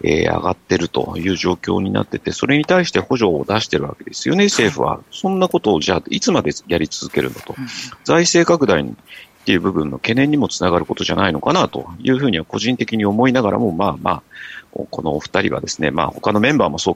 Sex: male